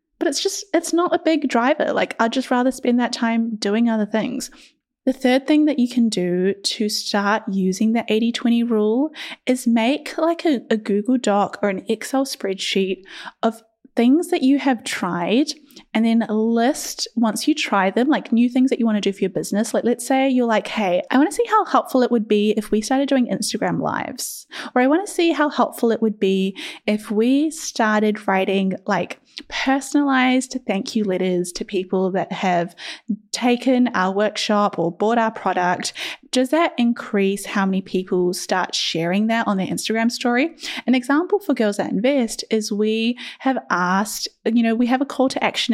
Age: 10-29